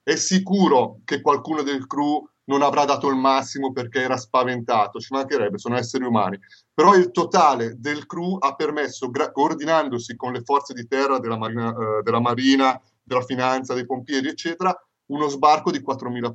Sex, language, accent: male, Italian, native